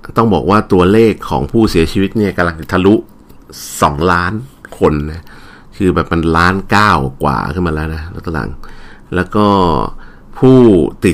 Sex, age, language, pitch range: male, 60-79, Thai, 80-105 Hz